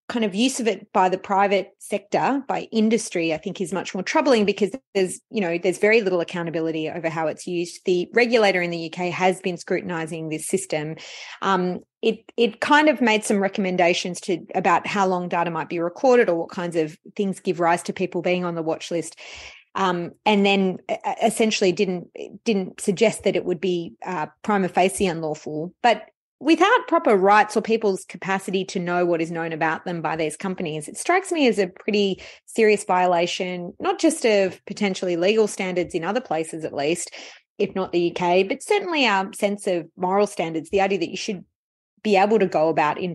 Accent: Australian